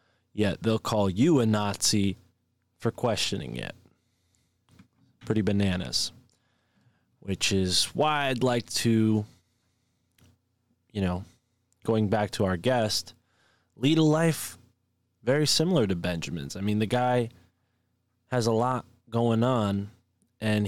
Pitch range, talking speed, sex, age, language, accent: 100-120 Hz, 120 wpm, male, 20-39, English, American